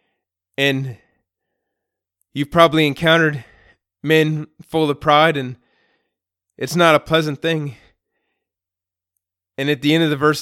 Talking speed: 120 wpm